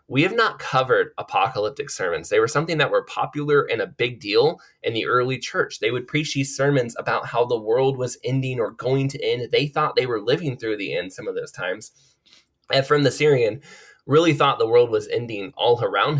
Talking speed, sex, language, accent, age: 220 wpm, male, English, American, 20-39